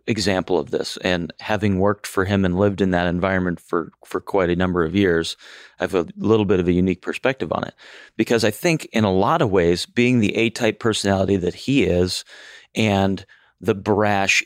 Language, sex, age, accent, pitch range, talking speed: English, male, 30-49, American, 95-110 Hz, 205 wpm